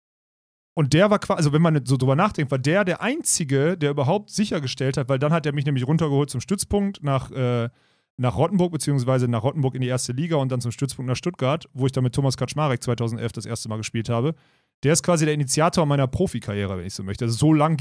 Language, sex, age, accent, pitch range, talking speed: German, male, 30-49, German, 130-160 Hz, 235 wpm